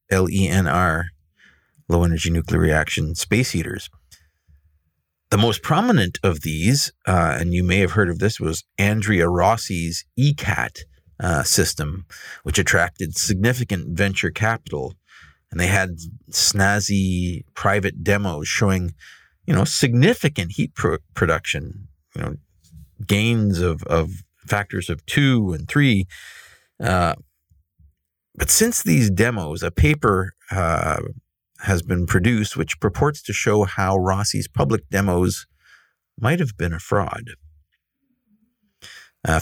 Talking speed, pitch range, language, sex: 120 wpm, 85-110 Hz, English, male